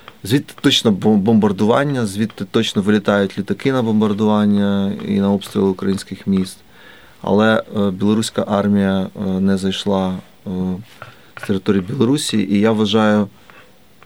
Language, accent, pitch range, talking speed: Ukrainian, native, 100-115 Hz, 105 wpm